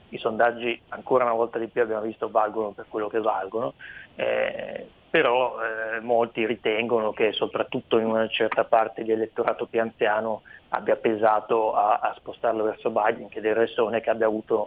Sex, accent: male, native